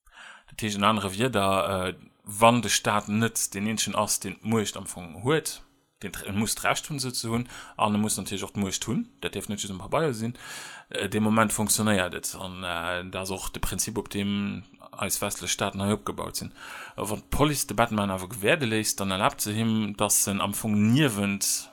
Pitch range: 95-110 Hz